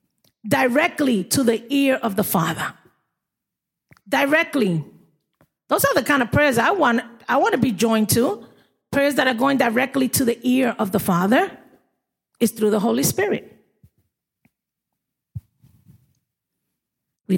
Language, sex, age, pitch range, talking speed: English, female, 40-59, 220-285 Hz, 135 wpm